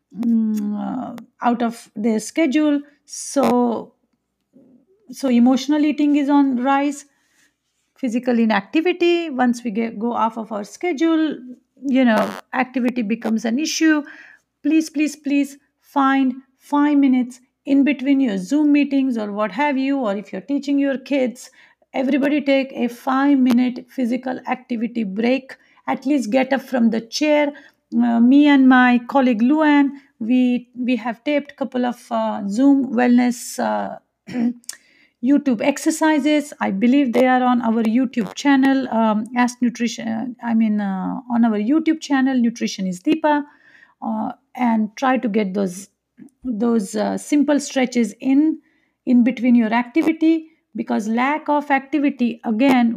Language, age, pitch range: English, 50-69, 235-285 Hz